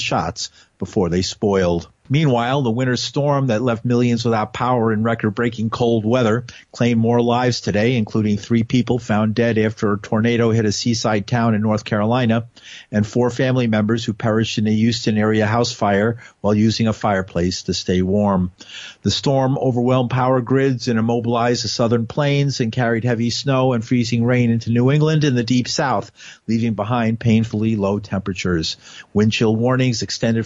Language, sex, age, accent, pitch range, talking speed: English, male, 50-69, American, 110-130 Hz, 175 wpm